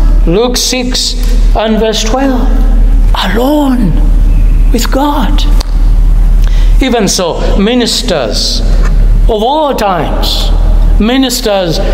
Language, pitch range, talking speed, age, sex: English, 195-250 Hz, 75 wpm, 60-79, male